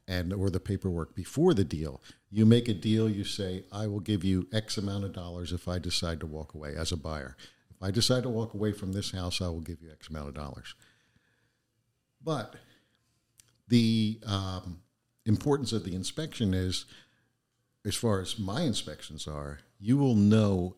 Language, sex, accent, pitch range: English, male, American, 90-115 Hz